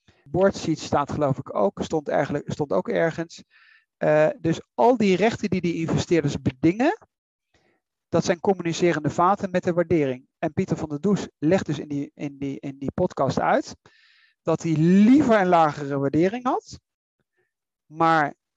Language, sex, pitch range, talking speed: Dutch, male, 150-190 Hz, 150 wpm